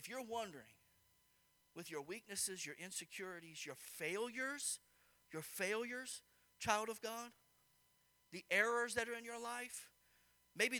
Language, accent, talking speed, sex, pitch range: English, American, 130 wpm, male, 170-245 Hz